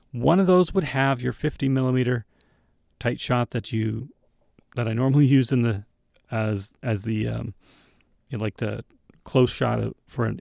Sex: male